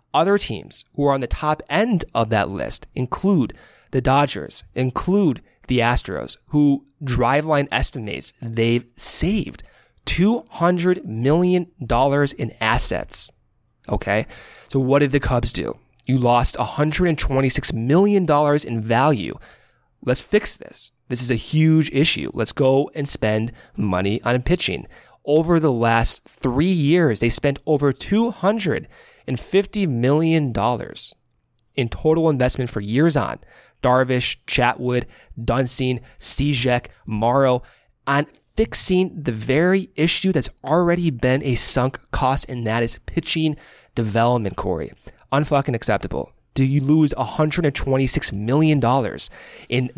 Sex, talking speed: male, 120 wpm